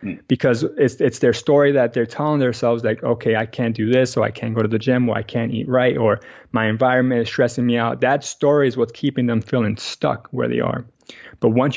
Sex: male